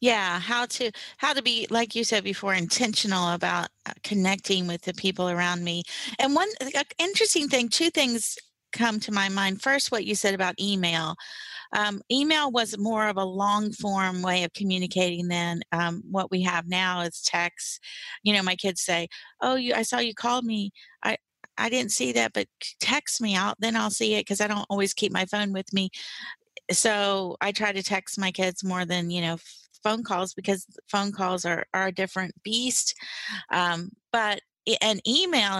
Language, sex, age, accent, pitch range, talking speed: English, female, 40-59, American, 185-230 Hz, 190 wpm